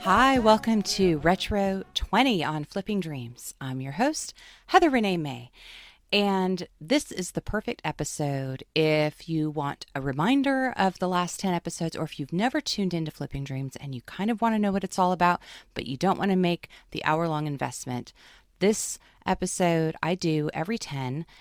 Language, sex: English, female